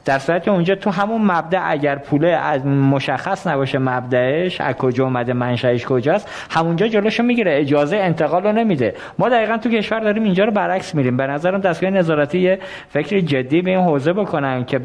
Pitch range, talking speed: 135-180 Hz, 180 wpm